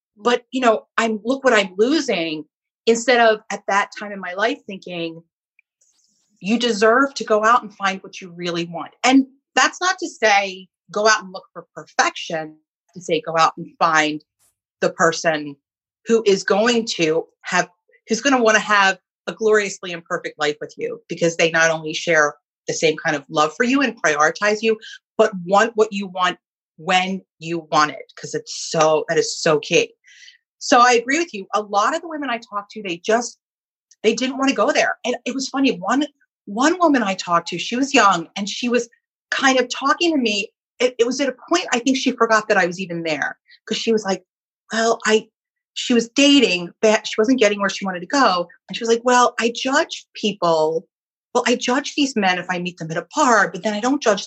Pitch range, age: 180-250 Hz, 30-49